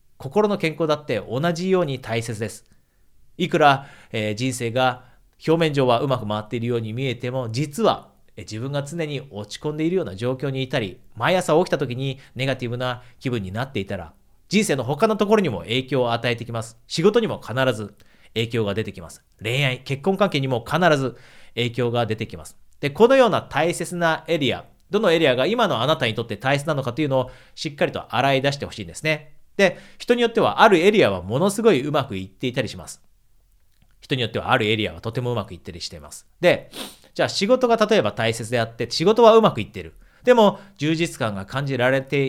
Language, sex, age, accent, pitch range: Japanese, male, 40-59, native, 115-165 Hz